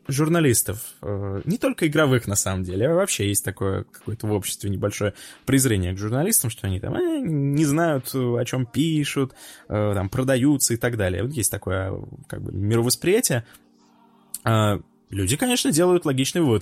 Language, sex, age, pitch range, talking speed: Russian, male, 20-39, 105-140 Hz, 155 wpm